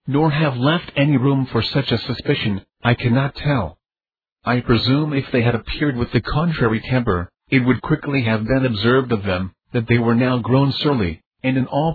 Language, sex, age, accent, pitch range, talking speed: English, male, 50-69, American, 115-140 Hz, 195 wpm